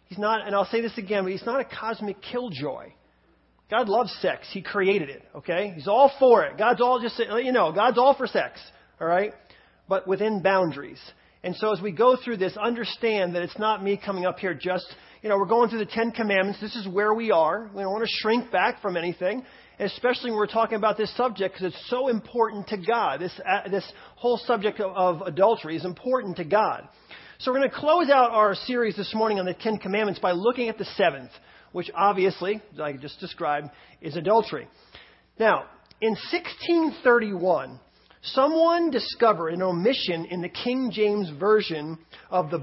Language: English